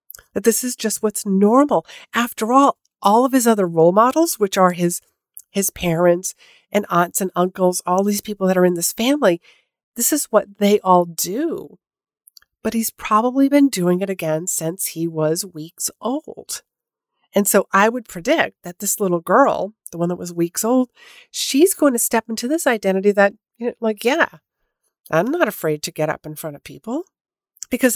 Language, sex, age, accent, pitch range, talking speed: English, female, 50-69, American, 180-245 Hz, 185 wpm